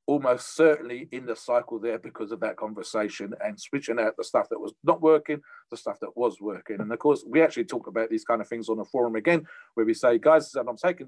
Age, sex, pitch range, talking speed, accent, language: 40-59, male, 125-165 Hz, 250 wpm, British, English